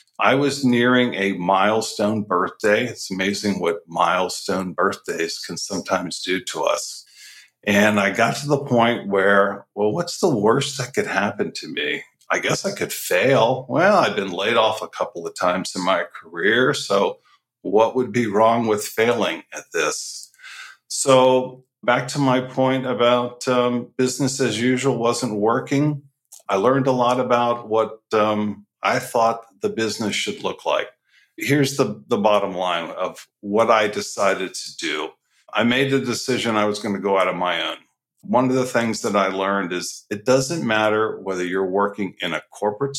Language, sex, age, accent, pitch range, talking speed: English, male, 50-69, American, 100-130 Hz, 175 wpm